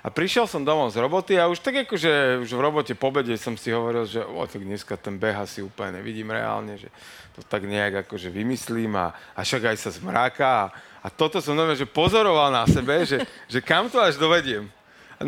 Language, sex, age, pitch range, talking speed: Slovak, male, 40-59, 115-150 Hz, 220 wpm